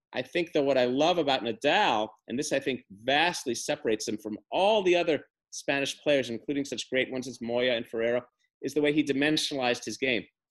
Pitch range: 130-160 Hz